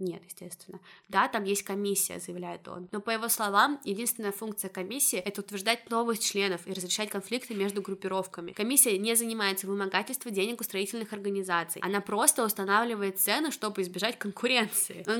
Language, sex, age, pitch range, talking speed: Russian, female, 20-39, 195-230 Hz, 160 wpm